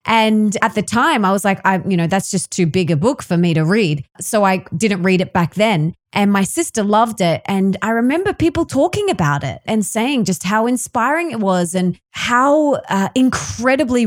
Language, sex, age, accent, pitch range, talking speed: English, female, 20-39, Australian, 180-240 Hz, 215 wpm